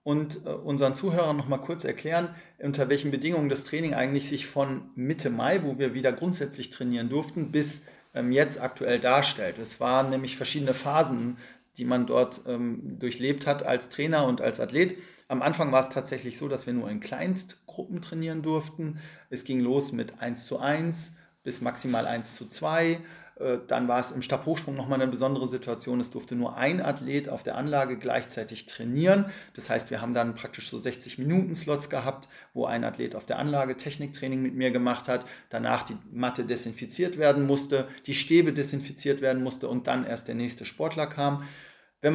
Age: 40-59